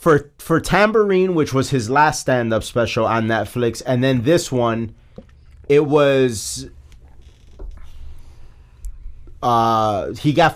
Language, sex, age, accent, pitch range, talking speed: English, male, 30-49, American, 110-160 Hz, 115 wpm